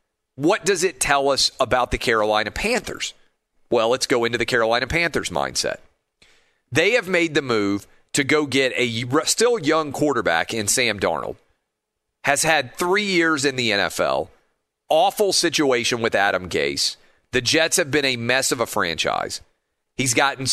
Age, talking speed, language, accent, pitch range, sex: 40-59, 160 wpm, English, American, 115-155 Hz, male